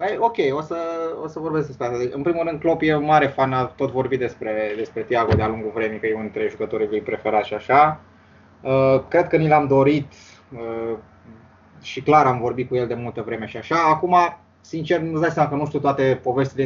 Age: 20-39